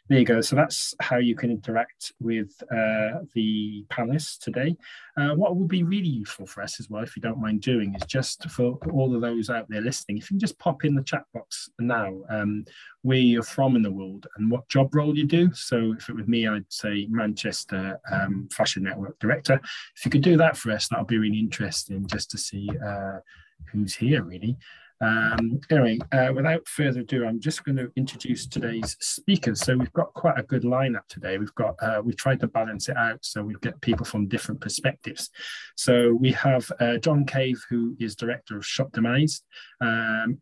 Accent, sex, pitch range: British, male, 110-135 Hz